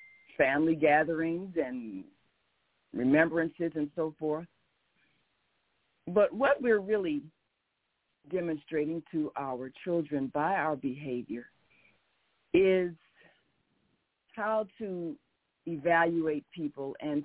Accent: American